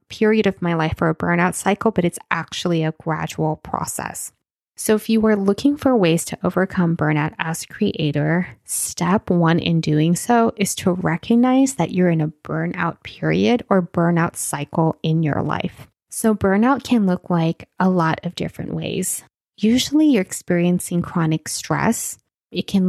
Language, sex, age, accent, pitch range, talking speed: English, female, 20-39, American, 170-215 Hz, 170 wpm